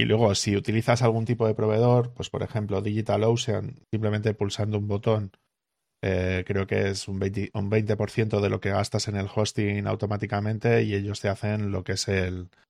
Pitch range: 95-110 Hz